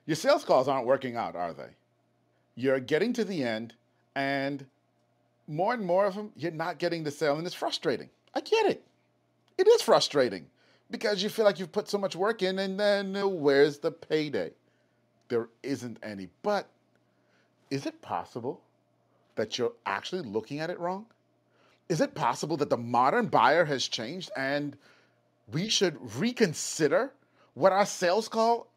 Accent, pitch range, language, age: American, 130-205 Hz, English, 40-59